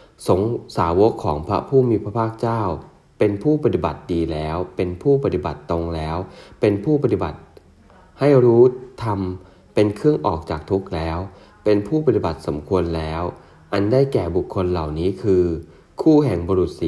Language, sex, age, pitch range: English, male, 30-49, 85-110 Hz